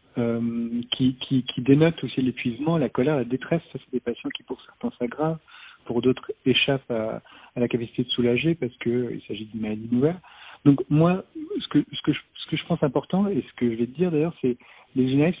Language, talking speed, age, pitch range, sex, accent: French, 225 wpm, 40-59, 120-155 Hz, male, French